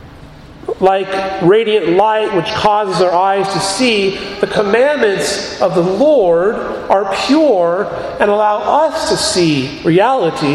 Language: English